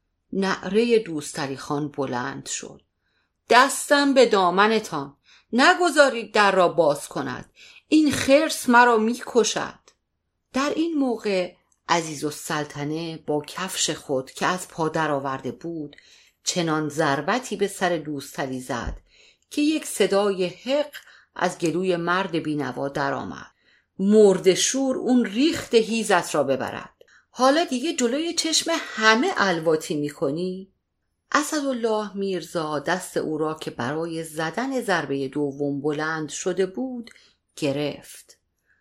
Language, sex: Persian, female